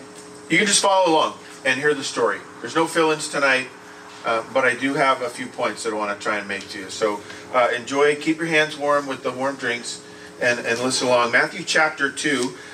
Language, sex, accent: English, male, American